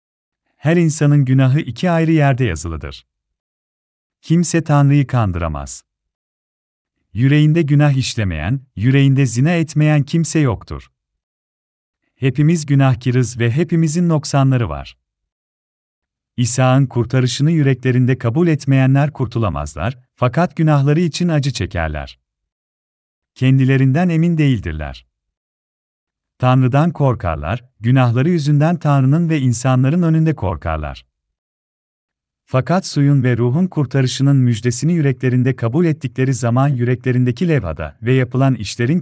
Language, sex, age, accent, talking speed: Turkish, male, 40-59, native, 95 wpm